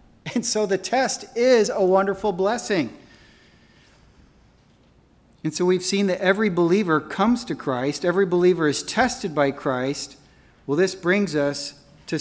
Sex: male